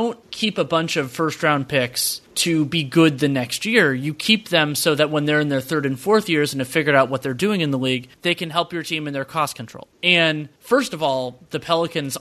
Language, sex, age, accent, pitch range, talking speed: English, male, 30-49, American, 140-180 Hz, 250 wpm